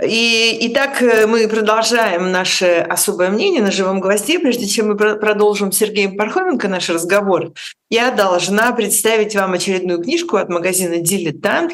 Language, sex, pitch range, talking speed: Russian, female, 160-215 Hz, 145 wpm